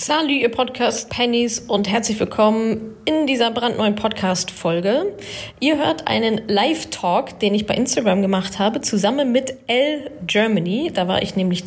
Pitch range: 190-245 Hz